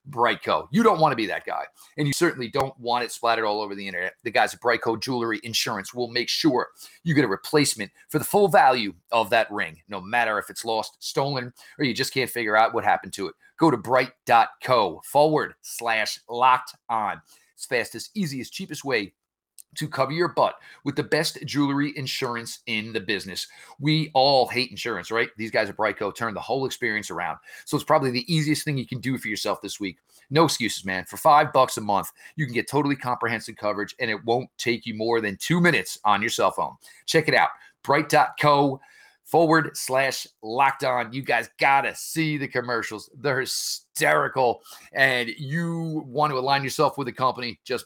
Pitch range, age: 115-145 Hz, 30-49